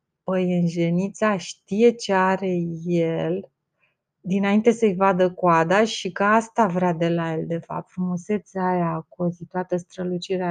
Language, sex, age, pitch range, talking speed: Romanian, female, 30-49, 175-220 Hz, 135 wpm